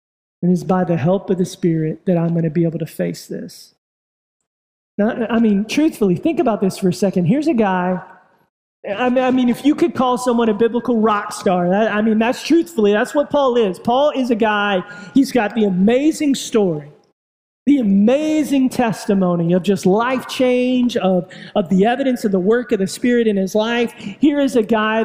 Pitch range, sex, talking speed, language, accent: 200-250 Hz, male, 195 wpm, English, American